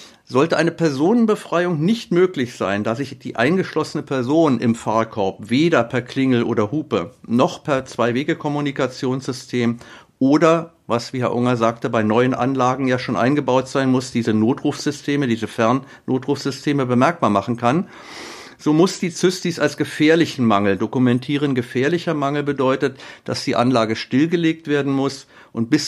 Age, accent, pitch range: 50-69, German, 125-155 Hz